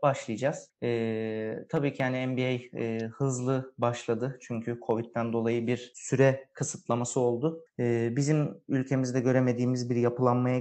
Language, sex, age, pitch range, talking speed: Turkish, male, 30-49, 125-155 Hz, 125 wpm